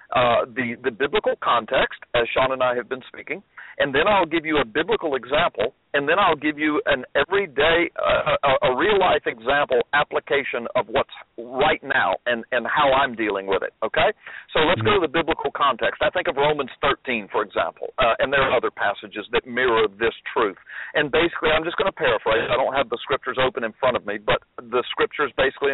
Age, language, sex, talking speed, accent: 50-69, English, male, 210 wpm, American